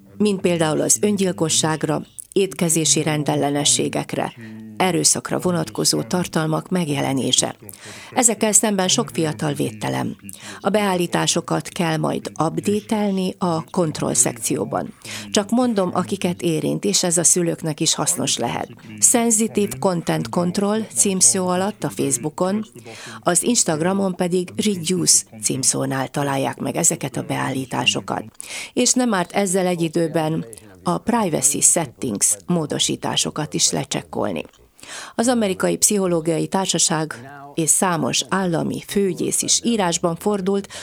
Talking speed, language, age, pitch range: 110 wpm, Hungarian, 40-59, 140-190 Hz